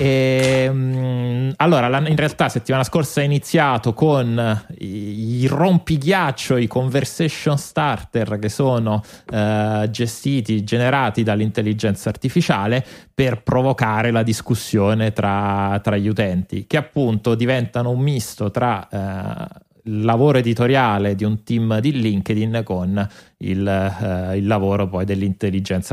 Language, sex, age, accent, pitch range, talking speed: Italian, male, 30-49, native, 105-125 Hz, 115 wpm